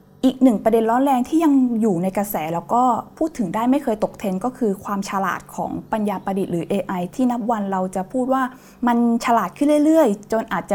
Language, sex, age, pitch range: Thai, female, 20-39, 195-250 Hz